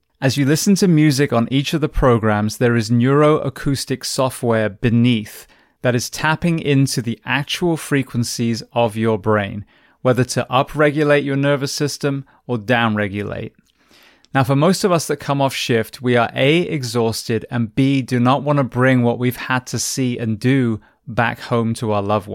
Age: 20-39